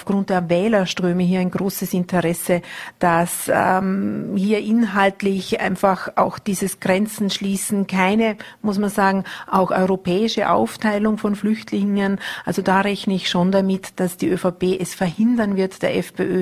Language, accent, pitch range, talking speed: German, Austrian, 180-205 Hz, 145 wpm